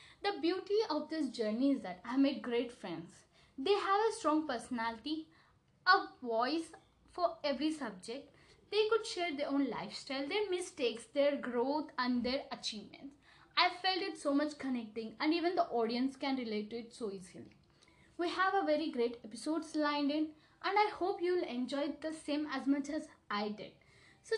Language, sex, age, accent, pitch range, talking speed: English, female, 20-39, Indian, 240-320 Hz, 175 wpm